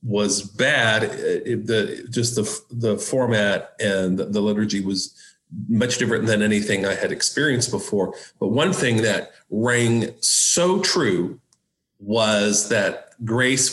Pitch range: 105-125 Hz